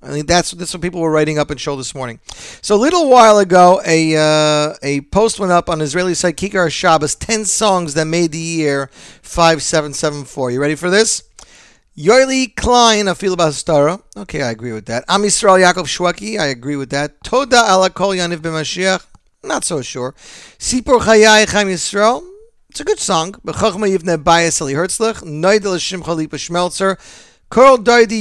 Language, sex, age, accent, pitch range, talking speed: English, male, 40-59, American, 160-215 Hz, 175 wpm